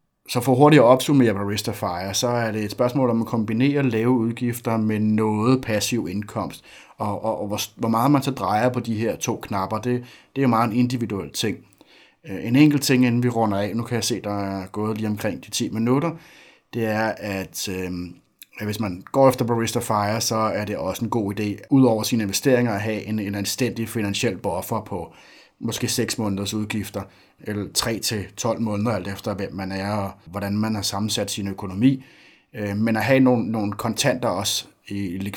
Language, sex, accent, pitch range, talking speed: Danish, male, native, 105-125 Hz, 200 wpm